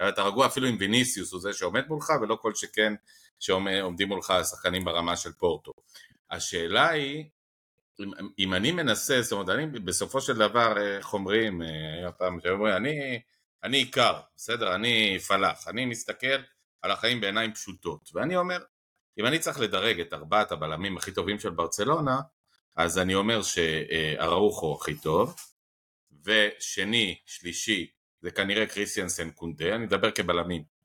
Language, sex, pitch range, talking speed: Hebrew, male, 90-125 Hz, 140 wpm